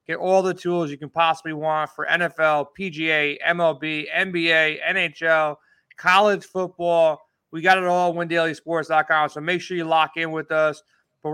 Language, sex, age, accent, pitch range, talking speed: English, male, 30-49, American, 155-185 Hz, 165 wpm